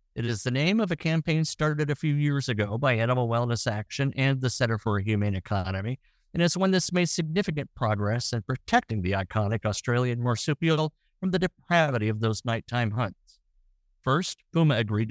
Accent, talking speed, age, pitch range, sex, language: American, 185 wpm, 50-69, 110-160 Hz, male, English